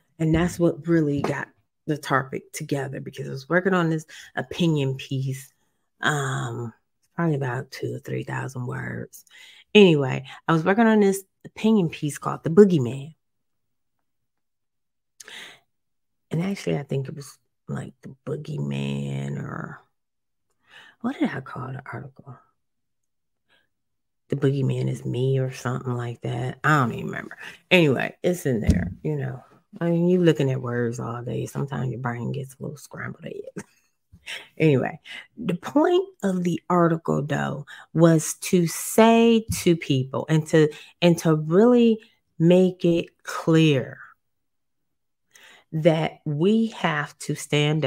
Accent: American